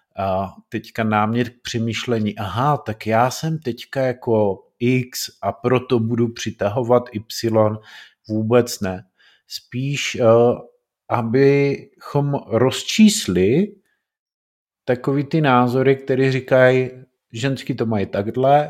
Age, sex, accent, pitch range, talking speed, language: 50-69, male, native, 110-135 Hz, 100 wpm, Czech